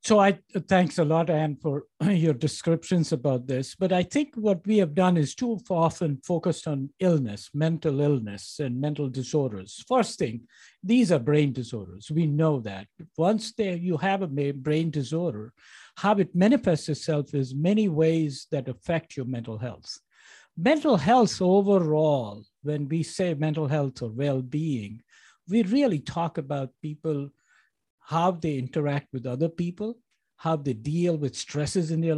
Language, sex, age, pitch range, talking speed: English, male, 60-79, 140-185 Hz, 160 wpm